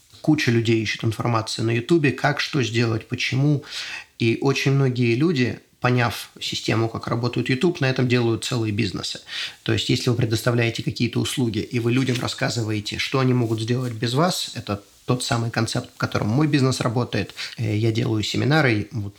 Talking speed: 170 wpm